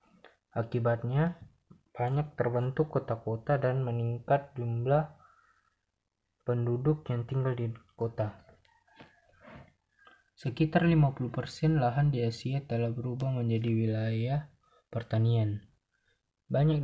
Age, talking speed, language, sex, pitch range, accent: 20-39, 80 wpm, Indonesian, male, 115-145 Hz, native